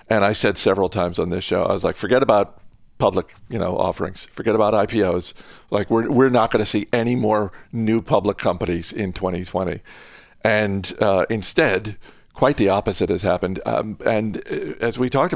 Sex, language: male, English